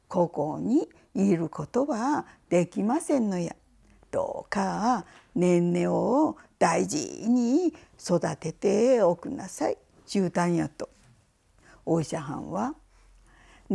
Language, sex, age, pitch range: Japanese, female, 50-69, 175-265 Hz